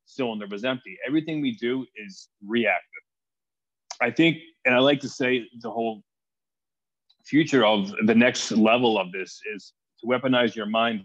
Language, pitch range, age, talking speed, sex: English, 115-145 Hz, 30-49, 160 wpm, male